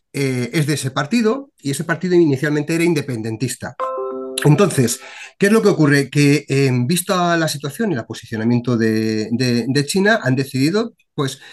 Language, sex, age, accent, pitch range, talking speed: Spanish, male, 40-59, Spanish, 130-175 Hz, 165 wpm